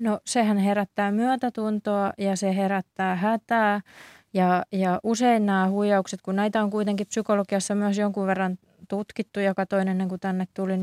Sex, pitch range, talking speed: female, 185-210 Hz, 145 wpm